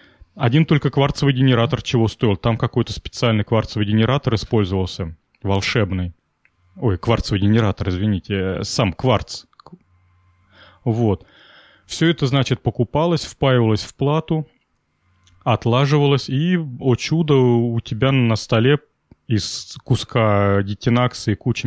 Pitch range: 105-135 Hz